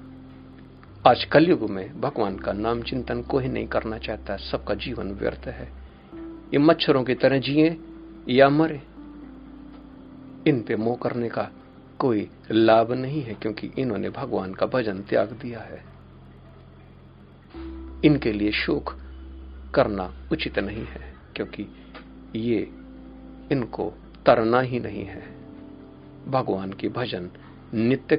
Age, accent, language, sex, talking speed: 50-69, native, Hindi, male, 120 wpm